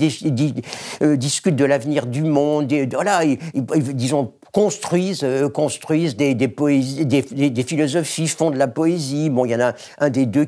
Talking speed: 200 wpm